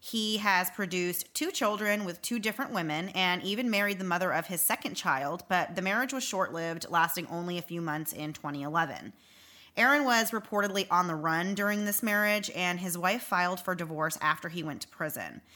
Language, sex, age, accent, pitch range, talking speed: English, female, 30-49, American, 160-200 Hz, 195 wpm